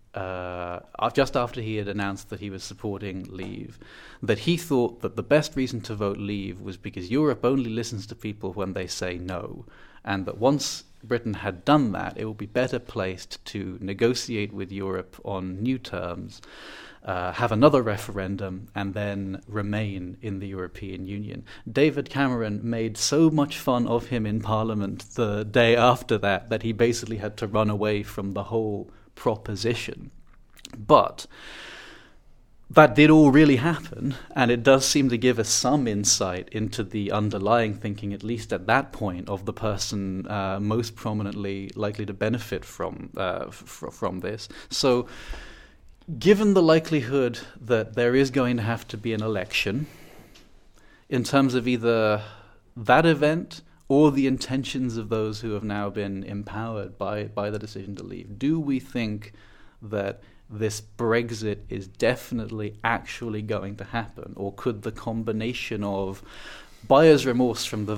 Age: 30-49